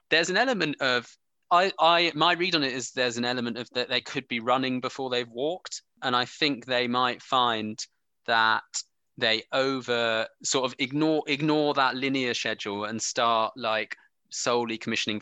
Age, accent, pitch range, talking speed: 20-39, British, 105-125 Hz, 175 wpm